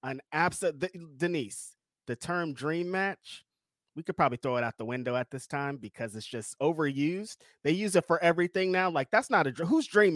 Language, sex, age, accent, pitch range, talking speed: English, male, 30-49, American, 125-165 Hz, 200 wpm